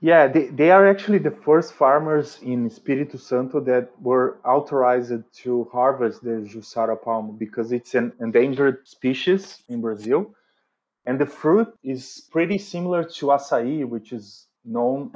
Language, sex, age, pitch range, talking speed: English, male, 20-39, 120-150 Hz, 145 wpm